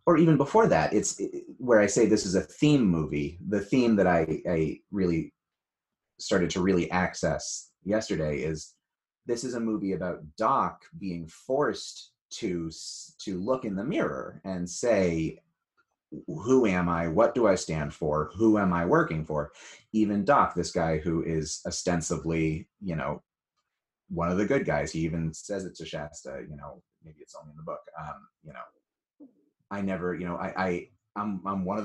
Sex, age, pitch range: male, 30-49, 80-105 Hz